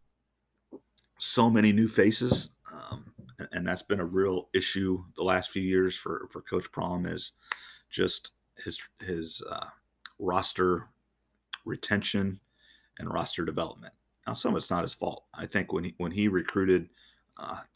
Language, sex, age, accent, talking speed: English, male, 40-59, American, 150 wpm